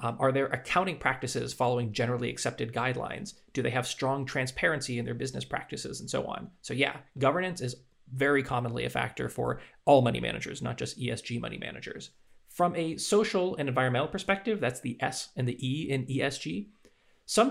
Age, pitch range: 30-49, 130-175 Hz